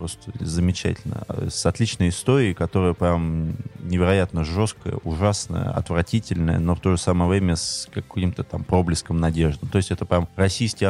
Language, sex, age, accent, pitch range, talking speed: Russian, male, 20-39, native, 85-105 Hz, 150 wpm